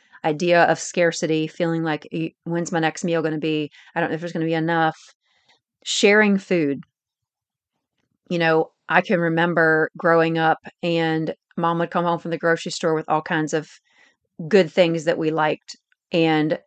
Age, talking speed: 40-59, 175 wpm